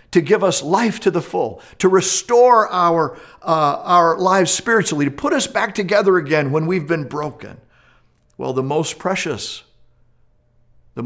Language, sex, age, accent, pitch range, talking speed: English, male, 50-69, American, 125-175 Hz, 150 wpm